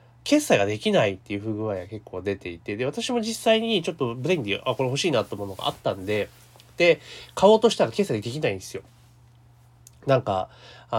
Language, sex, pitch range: Japanese, male, 110-175 Hz